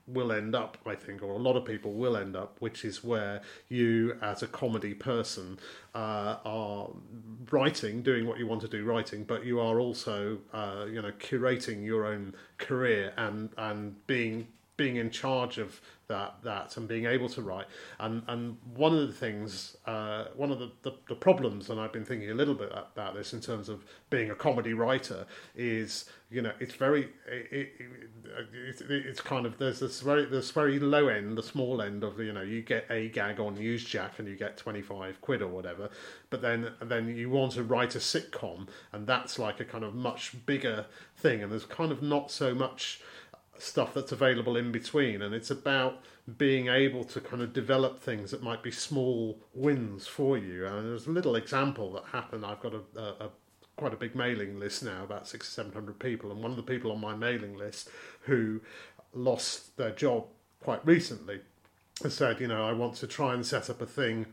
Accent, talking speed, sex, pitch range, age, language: British, 205 wpm, male, 105-130 Hz, 40-59, English